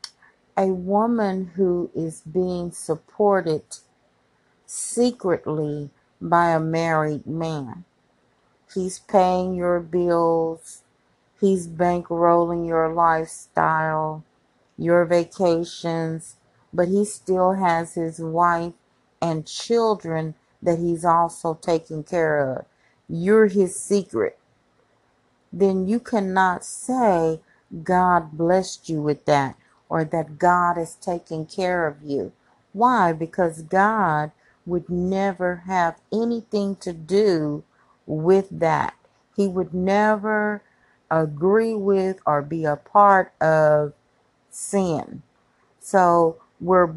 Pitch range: 160-190 Hz